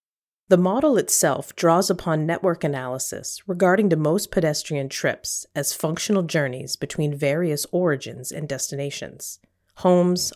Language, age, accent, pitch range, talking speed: English, 40-59, American, 145-185 Hz, 120 wpm